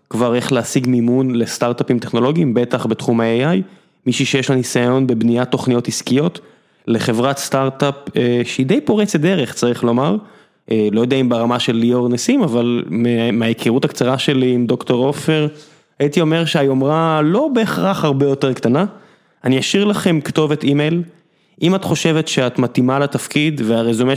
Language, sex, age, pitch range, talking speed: Hebrew, male, 20-39, 120-155 Hz, 150 wpm